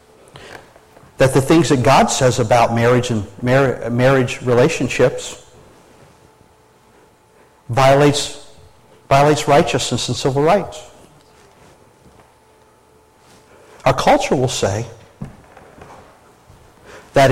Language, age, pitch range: English, 50-69, 120-140 Hz